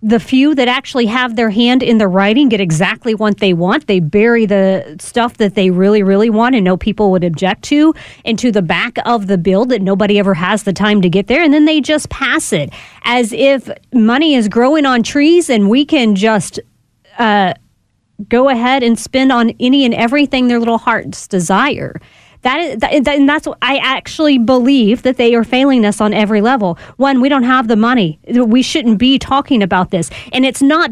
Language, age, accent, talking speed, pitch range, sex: English, 30-49, American, 205 wpm, 205-275 Hz, female